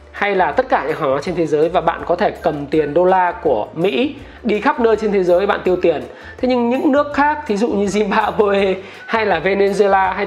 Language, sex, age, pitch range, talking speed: Vietnamese, male, 20-39, 170-235 Hz, 240 wpm